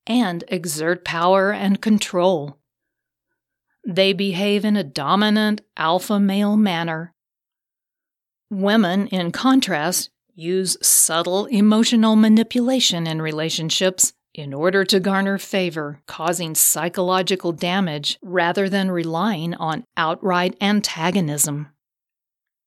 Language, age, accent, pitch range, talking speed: English, 40-59, American, 170-210 Hz, 95 wpm